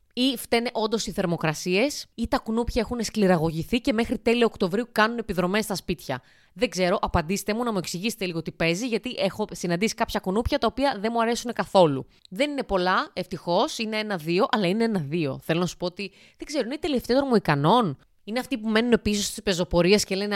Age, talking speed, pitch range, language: 20-39, 200 wpm, 170-235 Hz, Greek